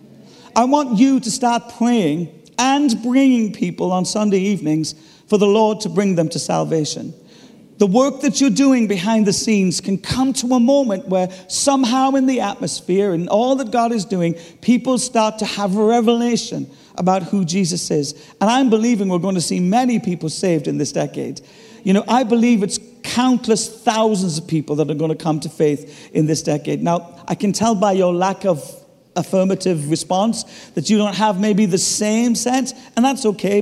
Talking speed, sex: 190 wpm, male